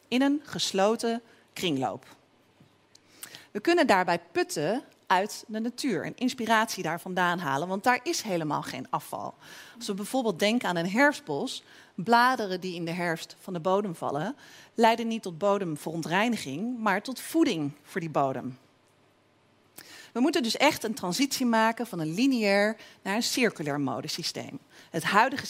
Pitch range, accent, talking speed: 175-235 Hz, Dutch, 150 wpm